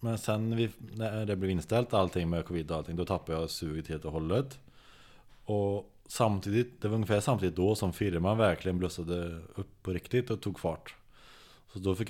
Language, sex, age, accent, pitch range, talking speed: Swedish, male, 20-39, Norwegian, 90-115 Hz, 190 wpm